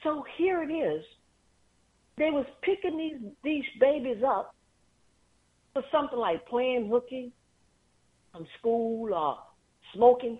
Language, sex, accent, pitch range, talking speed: English, female, American, 150-230 Hz, 115 wpm